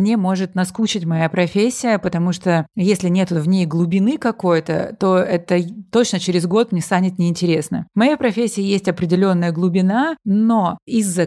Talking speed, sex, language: 155 wpm, female, Russian